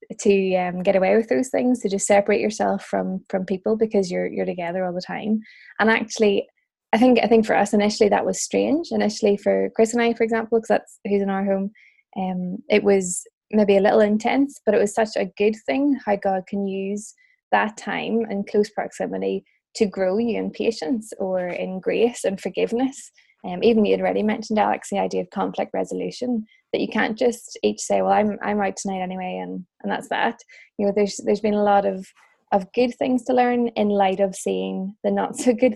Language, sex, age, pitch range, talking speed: English, female, 20-39, 190-230 Hz, 215 wpm